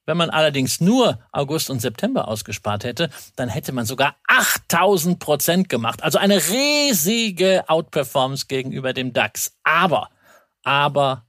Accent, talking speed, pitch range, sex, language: German, 135 wpm, 130-170 Hz, male, German